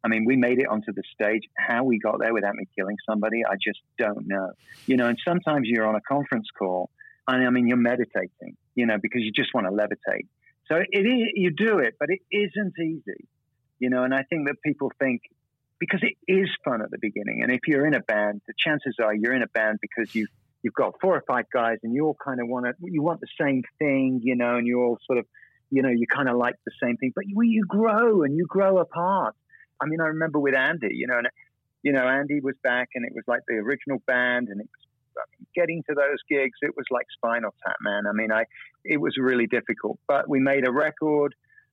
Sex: male